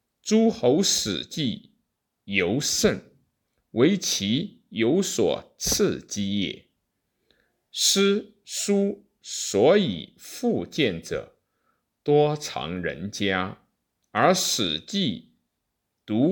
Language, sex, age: Chinese, male, 50-69